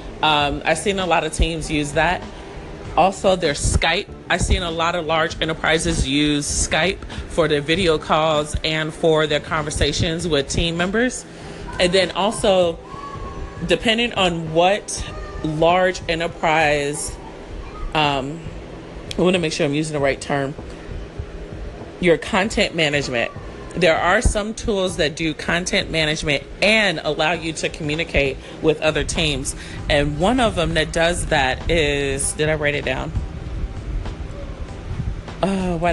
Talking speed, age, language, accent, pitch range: 140 wpm, 30-49, English, American, 145-185 Hz